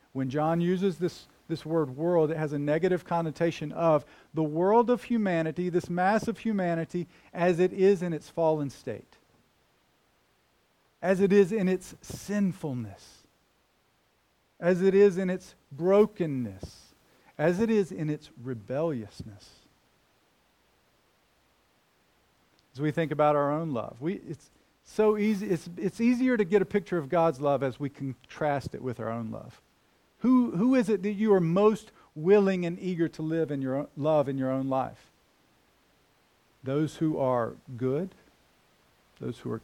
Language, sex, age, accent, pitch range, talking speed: English, male, 40-59, American, 135-190 Hz, 155 wpm